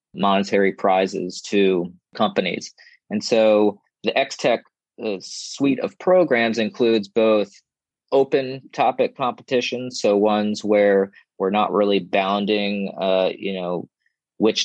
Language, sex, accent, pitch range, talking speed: English, male, American, 95-120 Hz, 115 wpm